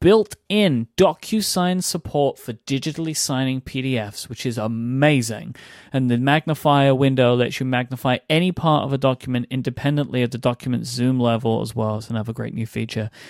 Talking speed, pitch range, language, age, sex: 160 wpm, 120-145 Hz, English, 30-49, male